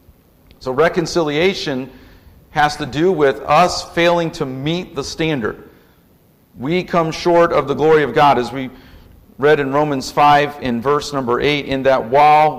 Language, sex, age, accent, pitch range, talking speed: English, male, 50-69, American, 120-155 Hz, 155 wpm